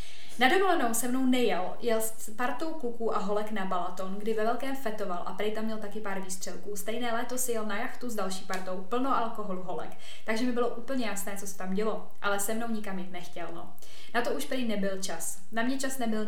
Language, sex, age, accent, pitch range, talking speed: Czech, female, 20-39, native, 205-240 Hz, 230 wpm